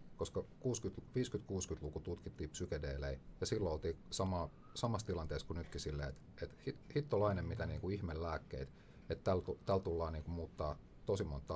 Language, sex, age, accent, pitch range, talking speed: Finnish, male, 40-59, native, 75-95 Hz, 140 wpm